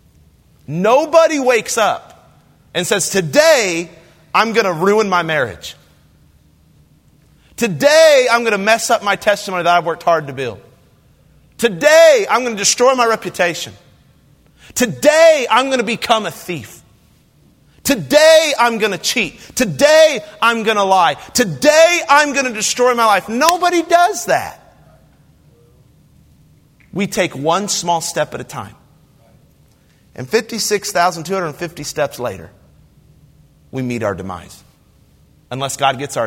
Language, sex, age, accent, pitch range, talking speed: English, male, 40-59, American, 150-230 Hz, 130 wpm